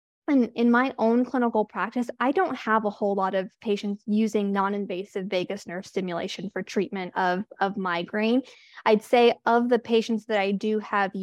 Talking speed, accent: 180 wpm, American